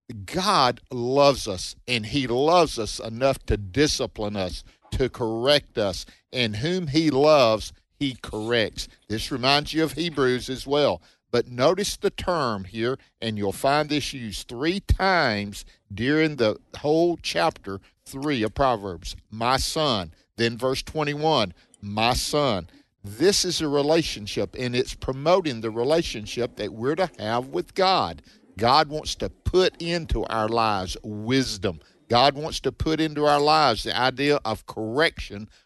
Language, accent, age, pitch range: English, American, 50-69, 110-150 Hz